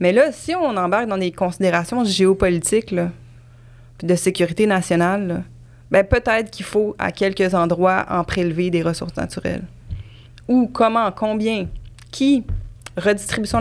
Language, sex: English, female